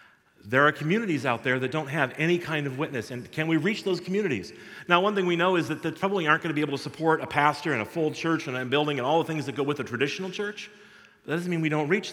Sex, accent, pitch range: male, American, 140-195 Hz